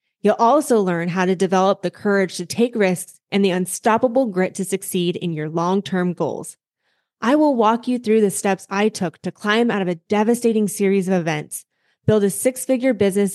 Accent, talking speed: American, 195 wpm